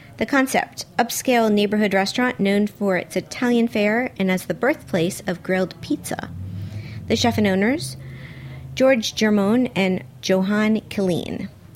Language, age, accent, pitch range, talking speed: English, 40-59, American, 170-225 Hz, 135 wpm